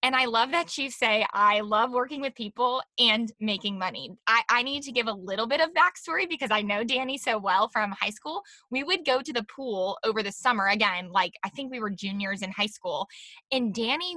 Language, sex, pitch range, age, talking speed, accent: English, female, 195-250 Hz, 10-29, 230 wpm, American